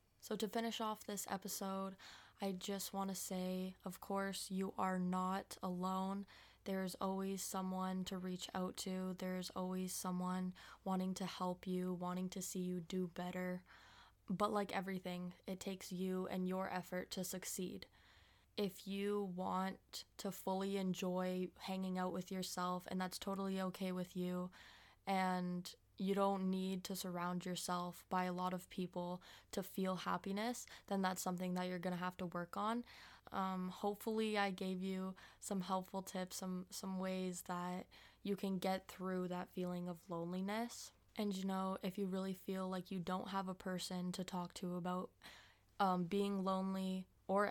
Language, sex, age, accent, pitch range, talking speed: English, female, 20-39, American, 180-195 Hz, 165 wpm